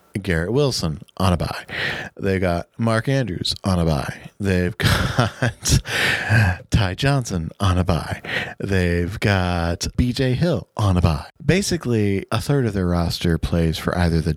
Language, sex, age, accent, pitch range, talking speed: English, male, 40-59, American, 90-125 Hz, 150 wpm